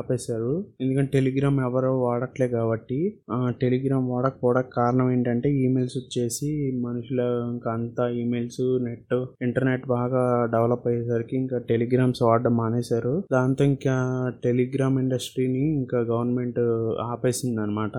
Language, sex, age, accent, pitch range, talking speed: Telugu, male, 20-39, native, 120-135 Hz, 105 wpm